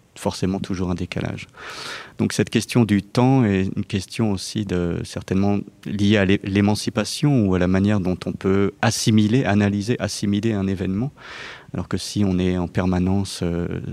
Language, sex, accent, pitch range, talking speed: French, male, French, 90-110 Hz, 170 wpm